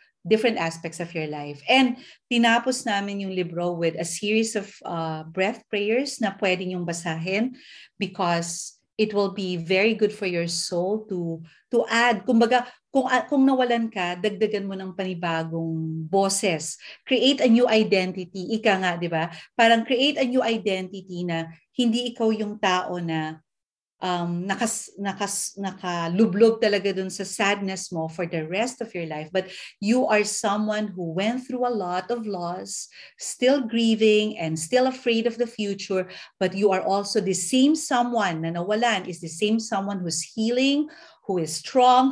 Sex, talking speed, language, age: female, 160 wpm, Filipino, 40-59